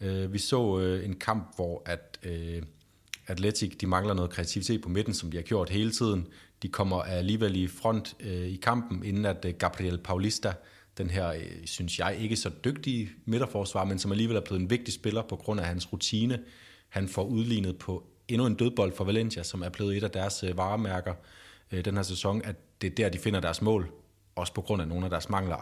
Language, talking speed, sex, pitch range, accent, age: Danish, 200 wpm, male, 90-110 Hz, native, 30-49